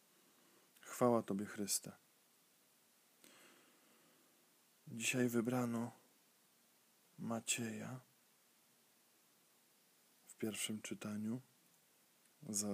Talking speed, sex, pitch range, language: 45 wpm, male, 110-125 Hz, Polish